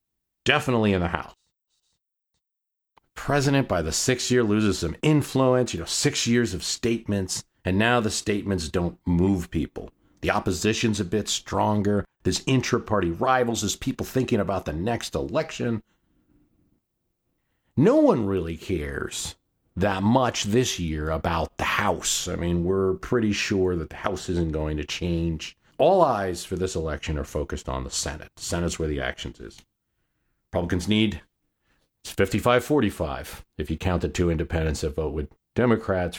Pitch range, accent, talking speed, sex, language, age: 80-115 Hz, American, 155 wpm, male, English, 40-59